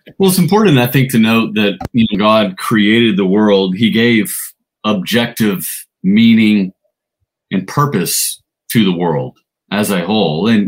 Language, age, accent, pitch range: English, 30-49, American, 105-145 Hz